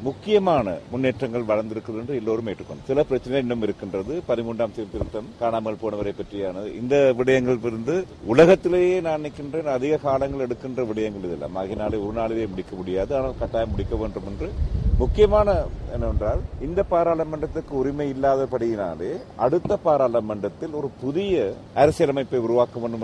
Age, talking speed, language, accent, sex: 40-59, 115 wpm, Tamil, native, male